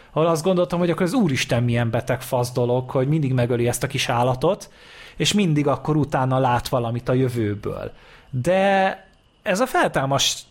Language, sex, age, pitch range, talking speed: Hungarian, male, 20-39, 120-150 Hz, 170 wpm